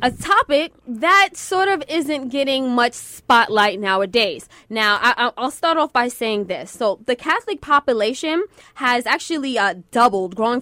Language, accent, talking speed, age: English, American, 155 wpm, 20-39